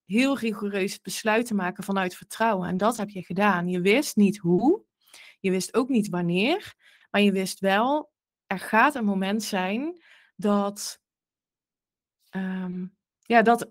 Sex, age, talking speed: female, 20-39, 150 wpm